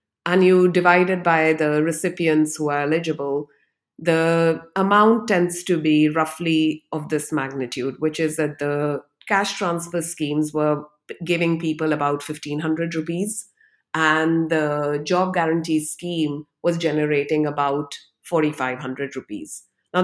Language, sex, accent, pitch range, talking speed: English, female, Indian, 145-170 Hz, 125 wpm